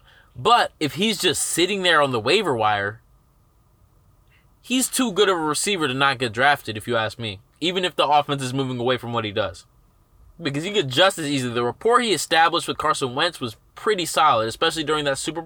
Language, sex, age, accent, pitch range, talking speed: English, male, 20-39, American, 120-165 Hz, 215 wpm